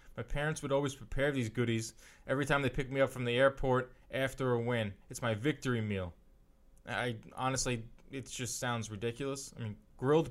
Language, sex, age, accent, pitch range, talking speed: English, male, 20-39, American, 115-140 Hz, 185 wpm